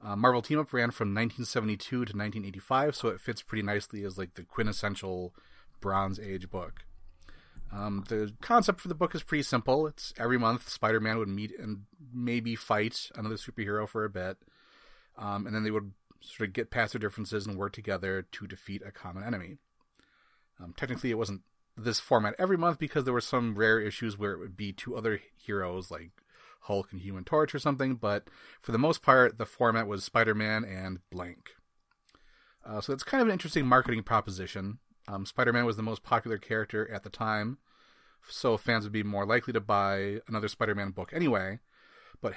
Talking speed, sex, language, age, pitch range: 195 wpm, male, English, 30-49, 100-120 Hz